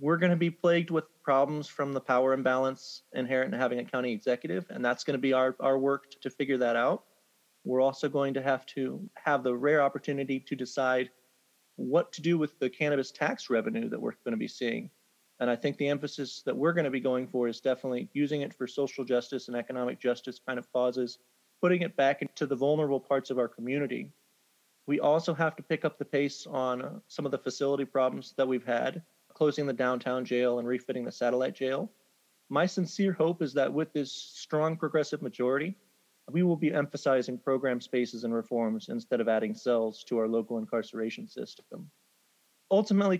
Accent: American